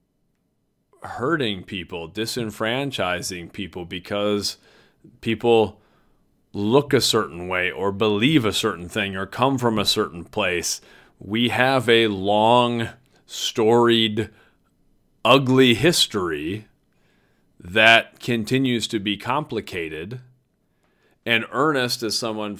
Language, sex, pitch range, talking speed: English, male, 90-115 Hz, 100 wpm